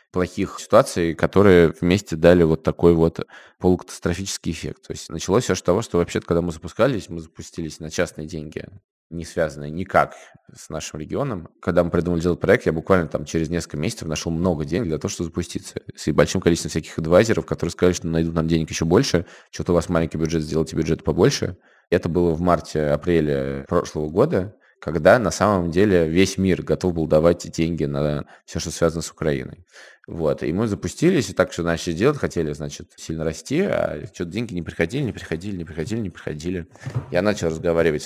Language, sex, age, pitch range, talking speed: Russian, male, 20-39, 80-95 Hz, 190 wpm